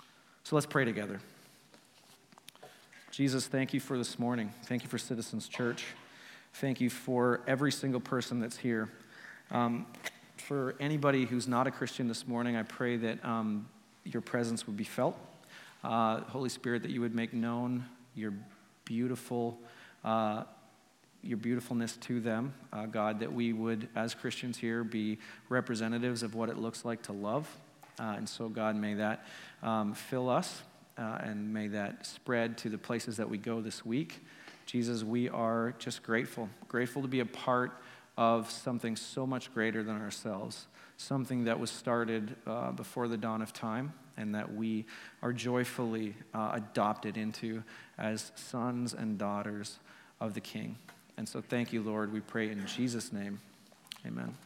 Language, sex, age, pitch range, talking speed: English, male, 40-59, 110-125 Hz, 165 wpm